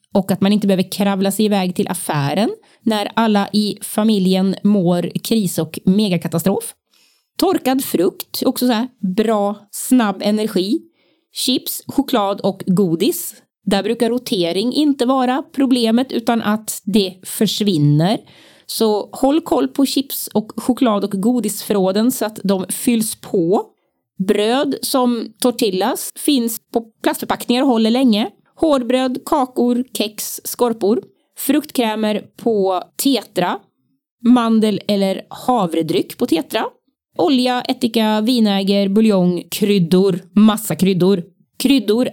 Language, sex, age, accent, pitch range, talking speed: Swedish, female, 30-49, native, 195-255 Hz, 120 wpm